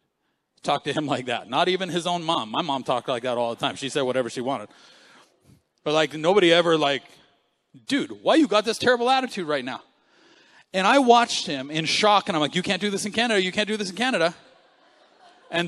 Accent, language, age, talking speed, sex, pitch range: American, English, 40-59, 225 wpm, male, 165-250 Hz